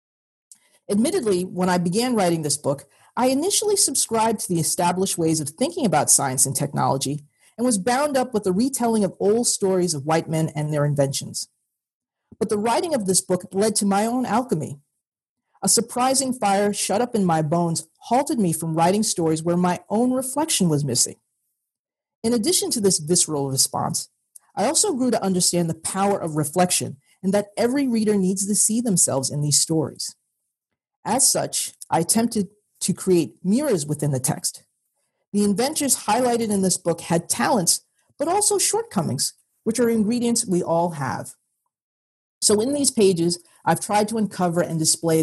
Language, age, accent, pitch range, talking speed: English, 40-59, American, 160-230 Hz, 170 wpm